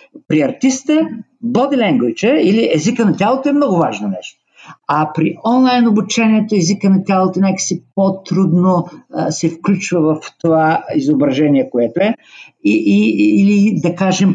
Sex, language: male, Bulgarian